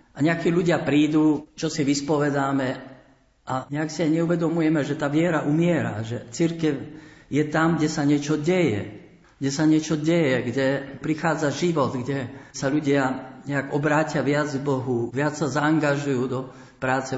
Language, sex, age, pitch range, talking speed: Slovak, male, 50-69, 125-145 Hz, 155 wpm